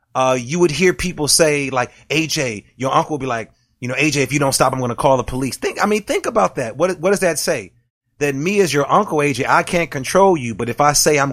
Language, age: English, 30-49